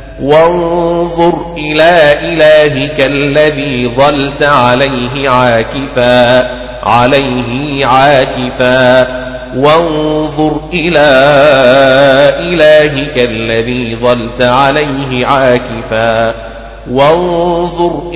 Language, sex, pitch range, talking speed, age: Arabic, male, 130-155 Hz, 55 wpm, 30-49